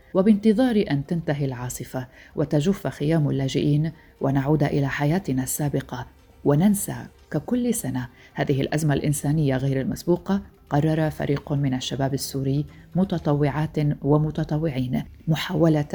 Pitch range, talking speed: 140-170 Hz, 100 wpm